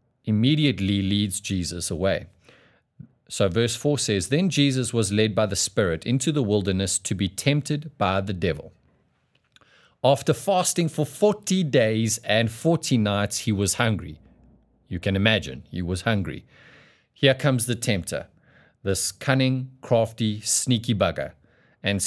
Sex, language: male, English